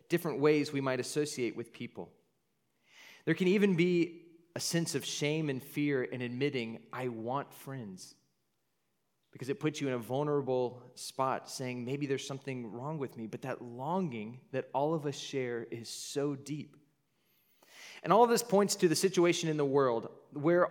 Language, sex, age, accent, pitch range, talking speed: English, male, 30-49, American, 135-180 Hz, 175 wpm